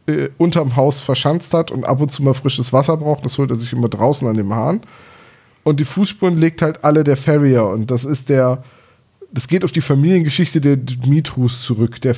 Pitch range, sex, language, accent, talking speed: 125-150 Hz, male, German, German, 210 wpm